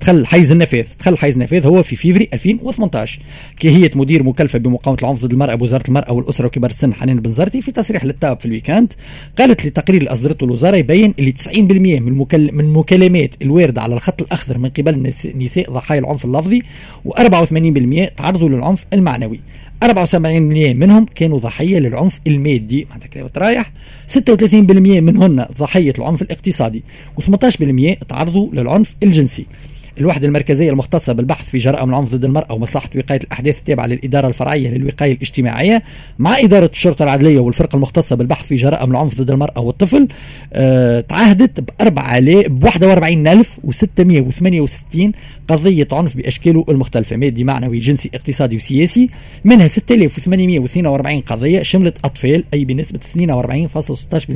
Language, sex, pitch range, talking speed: Arabic, male, 135-180 Hz, 135 wpm